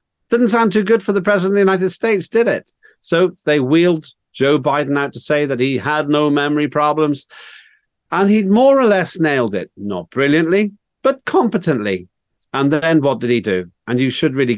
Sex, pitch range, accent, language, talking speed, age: male, 120-180 Hz, British, English, 200 wpm, 50-69